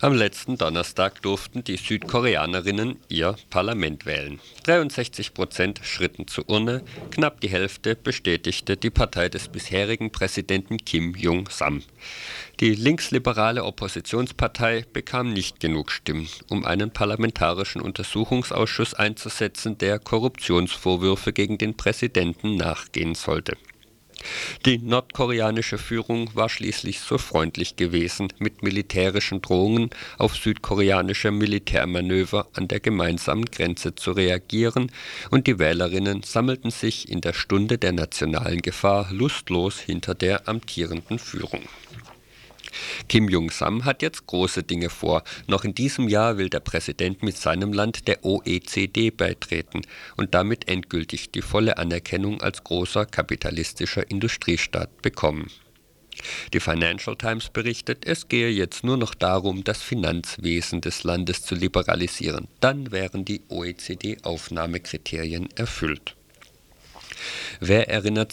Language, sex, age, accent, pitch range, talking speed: German, male, 50-69, German, 90-115 Hz, 120 wpm